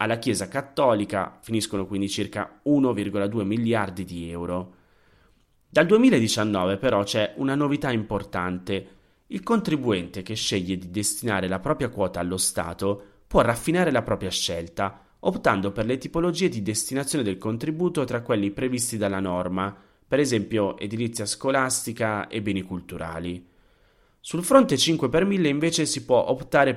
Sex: male